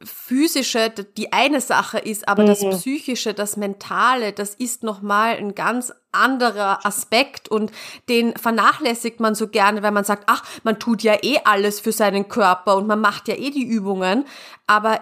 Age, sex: 30-49, female